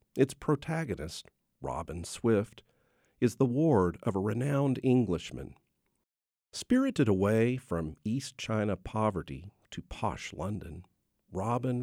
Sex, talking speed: male, 105 wpm